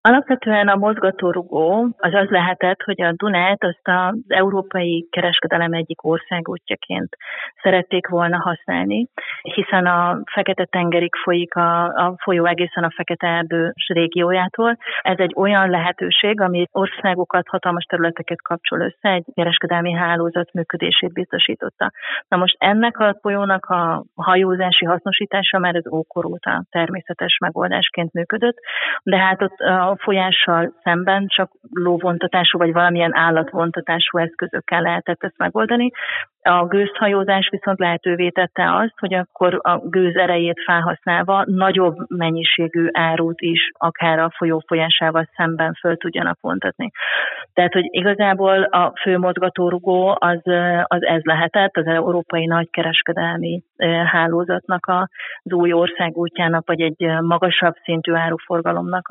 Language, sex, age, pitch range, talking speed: Hungarian, female, 30-49, 170-190 Hz, 125 wpm